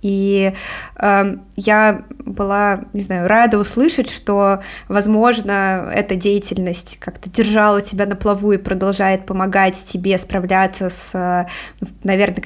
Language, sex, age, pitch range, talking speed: Russian, female, 20-39, 190-220 Hz, 115 wpm